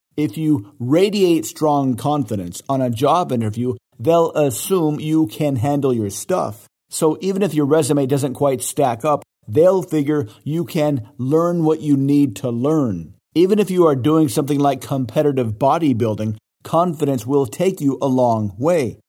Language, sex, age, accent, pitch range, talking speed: English, male, 50-69, American, 120-155 Hz, 160 wpm